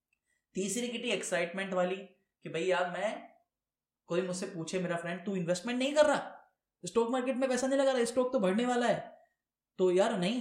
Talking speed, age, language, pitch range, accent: 190 wpm, 10-29, Hindi, 165-220 Hz, native